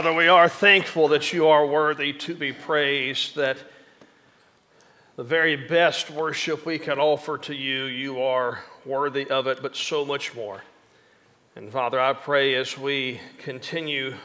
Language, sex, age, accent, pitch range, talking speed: English, male, 40-59, American, 135-165 Hz, 155 wpm